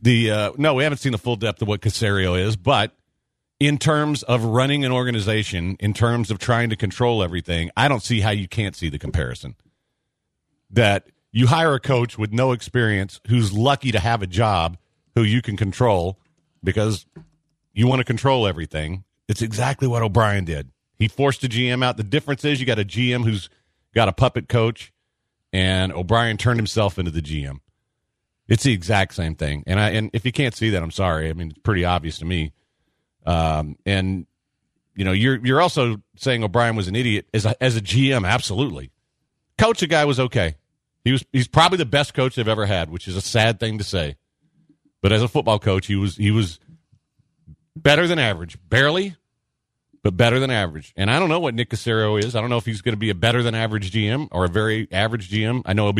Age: 50-69